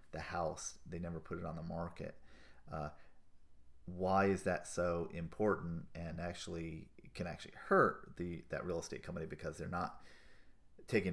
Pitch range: 80-95 Hz